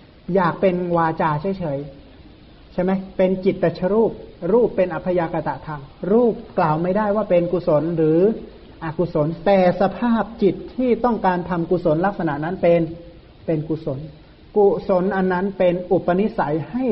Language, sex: Thai, male